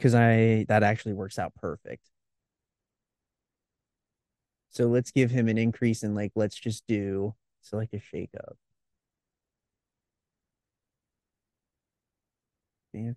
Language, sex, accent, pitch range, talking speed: English, male, American, 105-125 Hz, 110 wpm